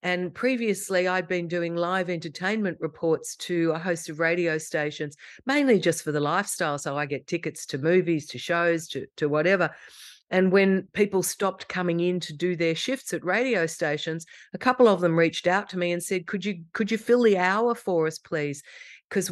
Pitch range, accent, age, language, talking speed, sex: 165-200 Hz, Australian, 50-69, English, 200 wpm, female